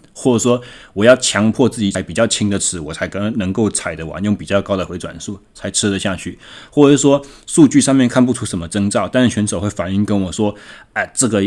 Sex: male